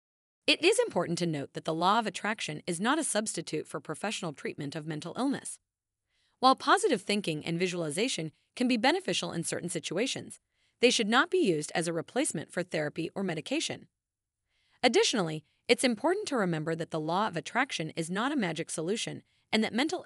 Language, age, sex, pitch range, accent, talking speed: English, 30-49, female, 160-245 Hz, American, 185 wpm